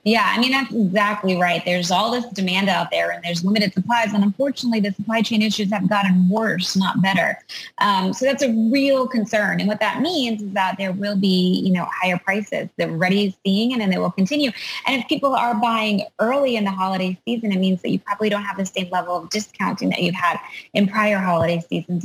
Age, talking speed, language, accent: 20-39, 225 wpm, English, American